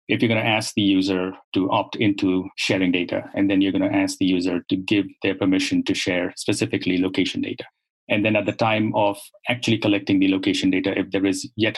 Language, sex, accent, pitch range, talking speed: English, male, Indian, 100-125 Hz, 225 wpm